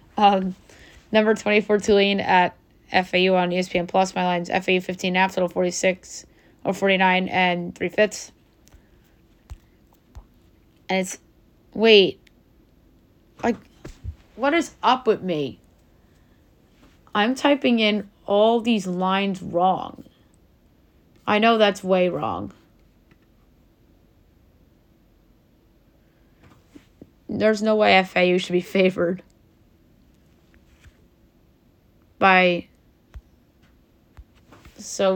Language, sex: English, female